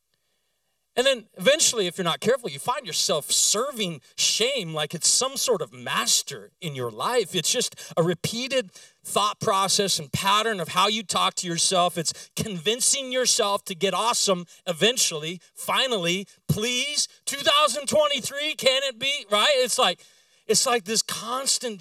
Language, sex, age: English, male, 40-59